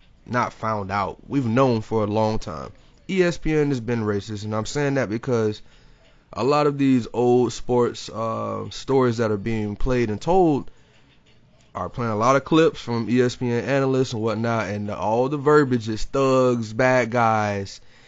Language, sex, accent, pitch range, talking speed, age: English, male, American, 110-135 Hz, 165 wpm, 20-39